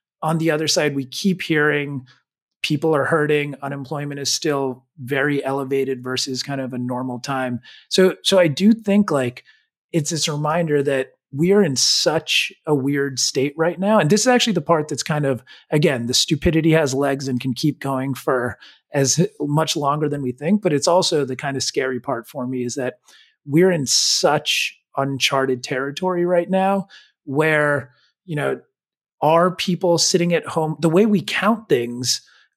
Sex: male